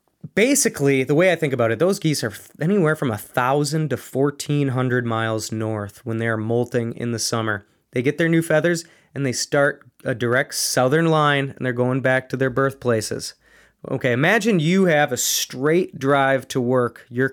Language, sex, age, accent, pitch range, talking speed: English, male, 20-39, American, 130-165 Hz, 180 wpm